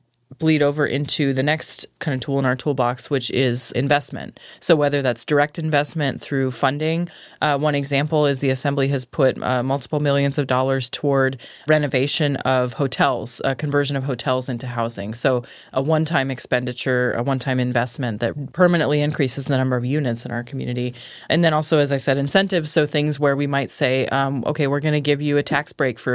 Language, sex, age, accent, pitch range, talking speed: English, female, 20-39, American, 130-150 Hz, 195 wpm